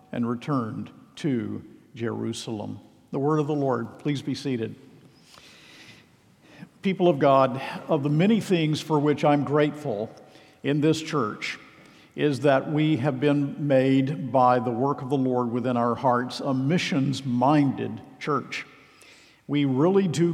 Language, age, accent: English, 50-69, American